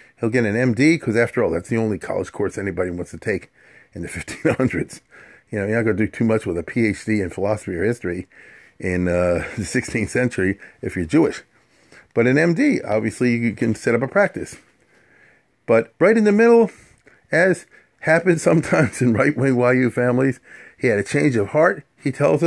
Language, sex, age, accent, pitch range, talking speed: English, male, 40-59, American, 100-125 Hz, 195 wpm